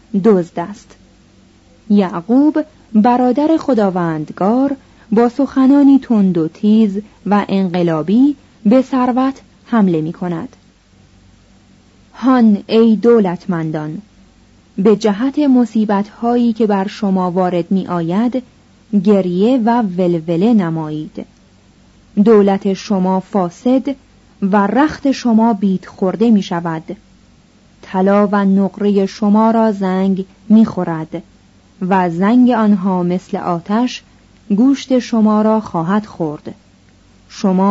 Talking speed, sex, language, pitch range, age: 95 wpm, female, Persian, 180-235 Hz, 30-49